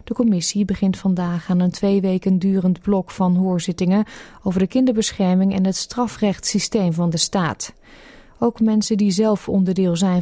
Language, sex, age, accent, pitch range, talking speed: Dutch, female, 30-49, Dutch, 180-215 Hz, 160 wpm